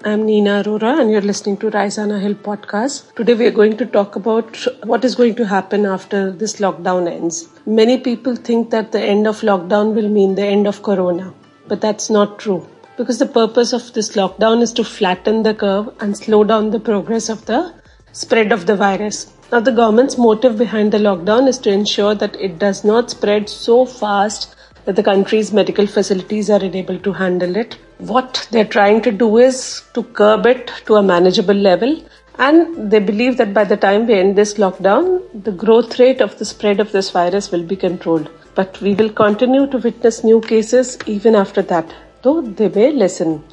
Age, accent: 50-69, Indian